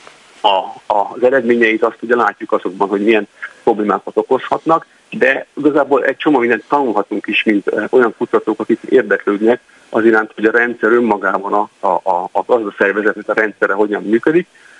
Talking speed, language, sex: 160 wpm, Hungarian, male